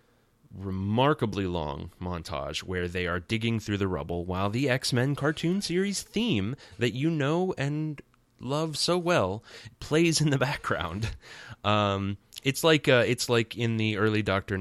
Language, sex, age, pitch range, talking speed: English, male, 20-39, 95-135 Hz, 150 wpm